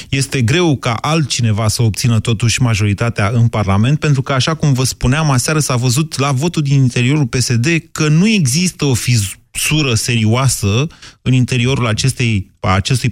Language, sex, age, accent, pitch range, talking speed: Romanian, male, 30-49, native, 110-145 Hz, 155 wpm